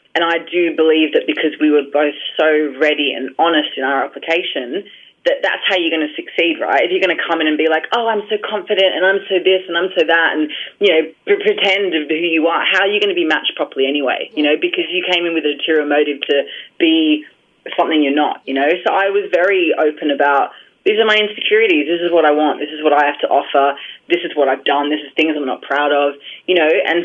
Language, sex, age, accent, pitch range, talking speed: English, female, 30-49, Australian, 150-195 Hz, 260 wpm